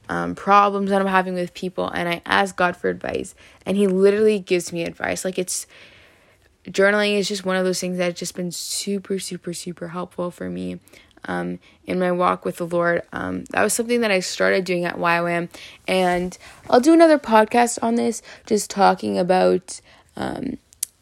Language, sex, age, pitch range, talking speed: English, female, 20-39, 155-215 Hz, 190 wpm